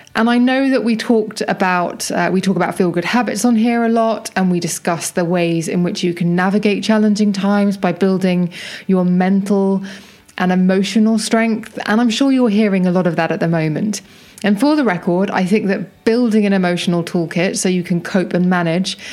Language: English